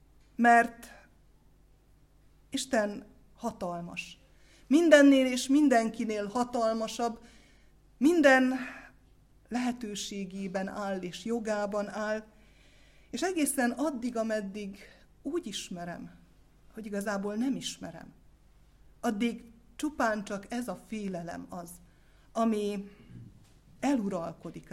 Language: Hungarian